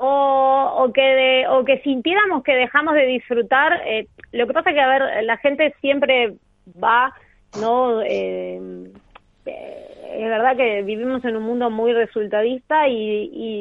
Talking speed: 165 wpm